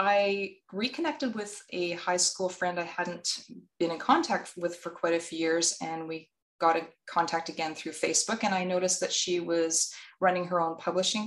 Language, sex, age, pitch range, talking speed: English, female, 20-39, 165-210 Hz, 190 wpm